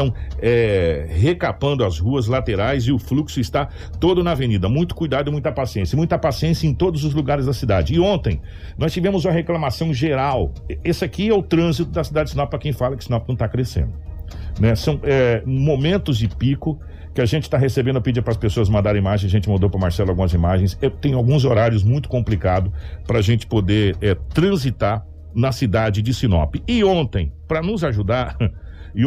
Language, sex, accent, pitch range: Portuguese, male, Brazilian, 100-160 Hz